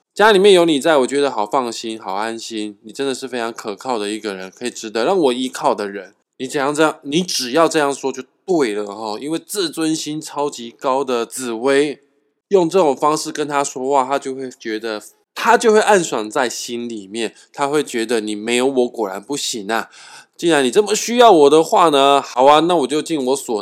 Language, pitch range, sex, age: Chinese, 115-165 Hz, male, 20-39